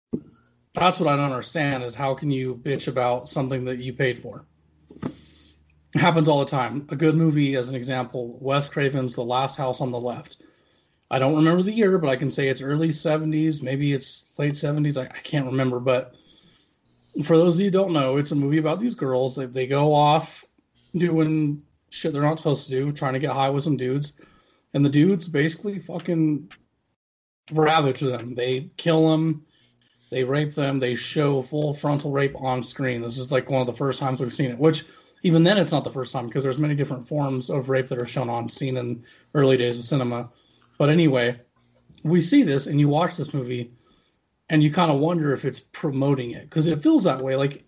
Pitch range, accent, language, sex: 130-155 Hz, American, English, male